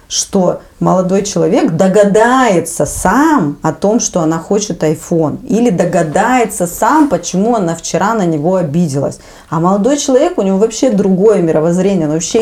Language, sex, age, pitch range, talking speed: Russian, female, 30-49, 150-195 Hz, 145 wpm